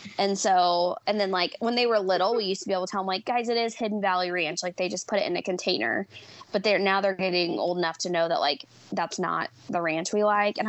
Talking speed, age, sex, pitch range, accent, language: 280 wpm, 20-39, female, 180-225 Hz, American, English